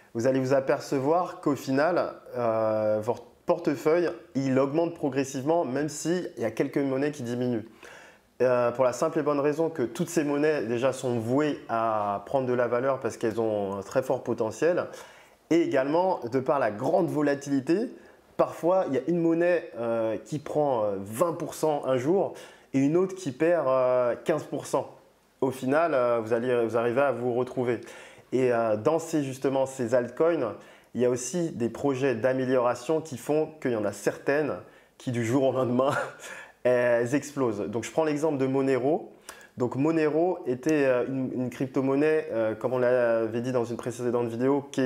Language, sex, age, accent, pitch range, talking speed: French, male, 20-39, French, 120-150 Hz, 175 wpm